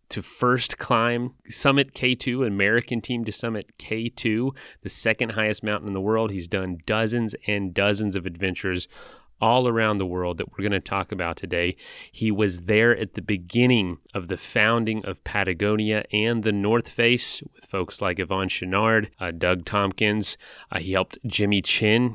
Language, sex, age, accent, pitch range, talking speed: English, male, 30-49, American, 95-115 Hz, 175 wpm